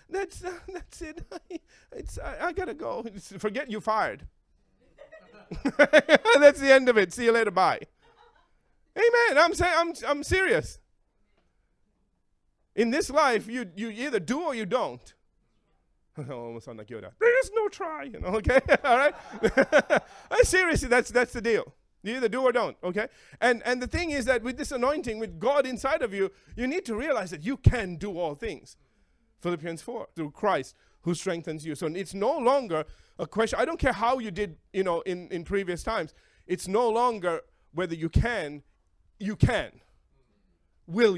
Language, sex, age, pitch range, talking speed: English, male, 30-49, 170-265 Hz, 175 wpm